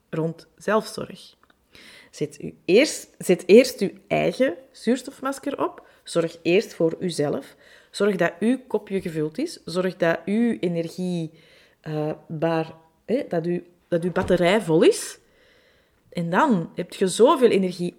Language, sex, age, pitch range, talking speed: Dutch, female, 30-49, 170-240 Hz, 130 wpm